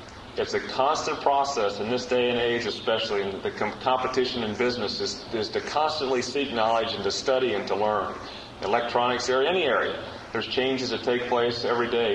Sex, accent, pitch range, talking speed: male, American, 120-130 Hz, 190 wpm